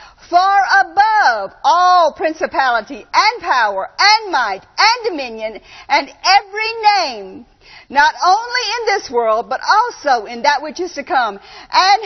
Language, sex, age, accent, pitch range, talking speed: English, female, 50-69, American, 280-415 Hz, 135 wpm